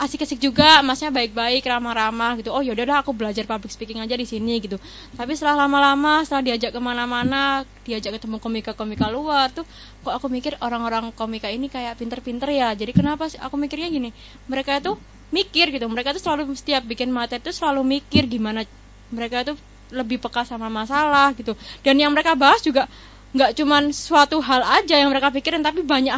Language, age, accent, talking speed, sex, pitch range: Indonesian, 20-39, native, 180 wpm, female, 230-285 Hz